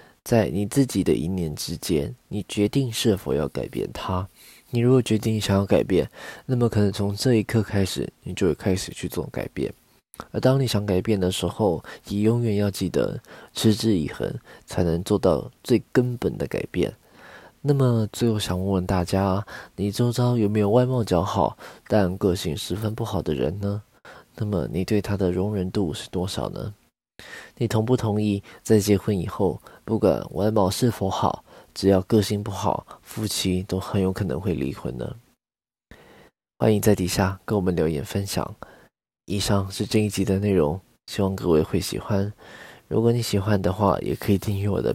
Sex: male